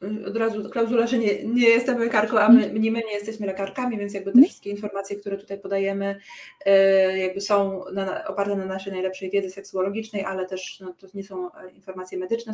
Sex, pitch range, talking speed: female, 185-210 Hz, 185 wpm